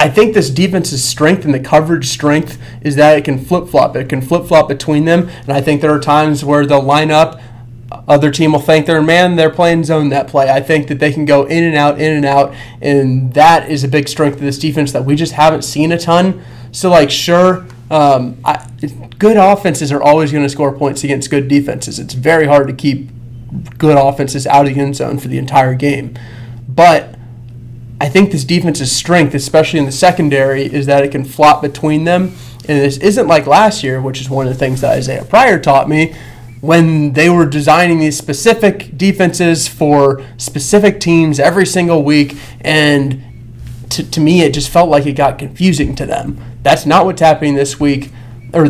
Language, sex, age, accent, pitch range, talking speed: English, male, 30-49, American, 140-160 Hz, 210 wpm